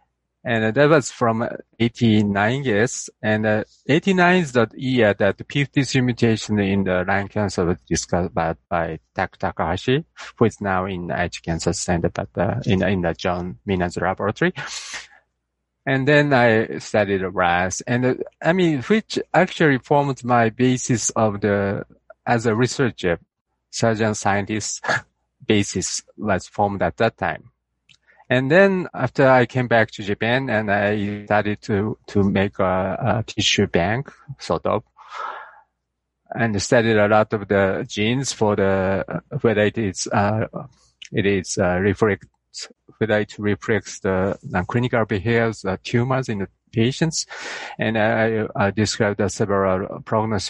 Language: English